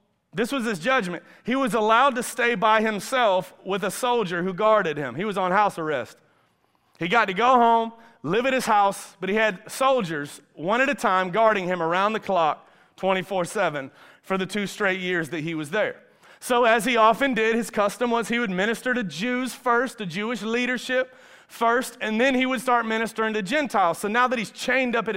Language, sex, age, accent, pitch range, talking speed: English, male, 30-49, American, 210-260 Hz, 205 wpm